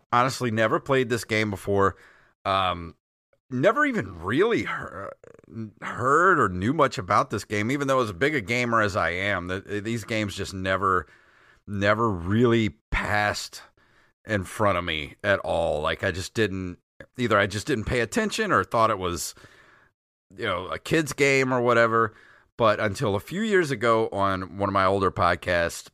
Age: 40-59